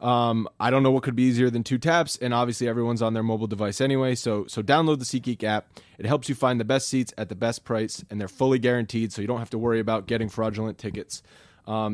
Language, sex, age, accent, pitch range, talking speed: English, male, 20-39, American, 110-130 Hz, 255 wpm